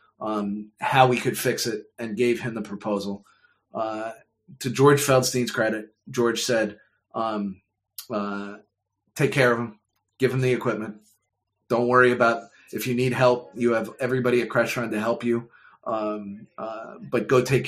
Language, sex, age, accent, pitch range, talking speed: English, male, 30-49, American, 105-125 Hz, 165 wpm